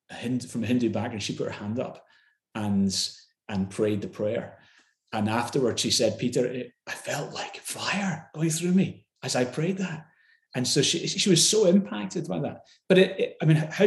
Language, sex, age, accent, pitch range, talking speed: English, male, 30-49, British, 115-155 Hz, 210 wpm